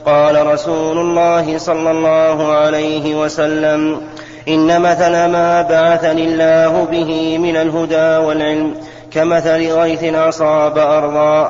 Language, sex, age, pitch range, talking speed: Arabic, male, 30-49, 155-165 Hz, 105 wpm